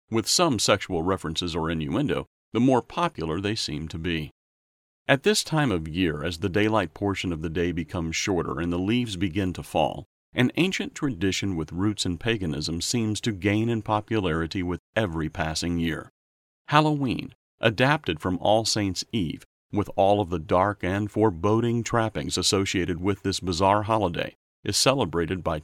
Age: 40-59